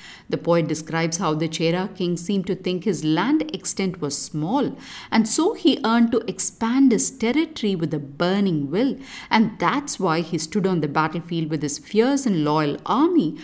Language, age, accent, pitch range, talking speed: English, 50-69, Indian, 160-260 Hz, 185 wpm